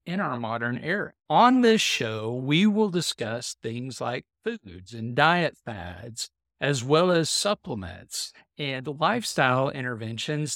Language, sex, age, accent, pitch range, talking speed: English, male, 50-69, American, 125-185 Hz, 130 wpm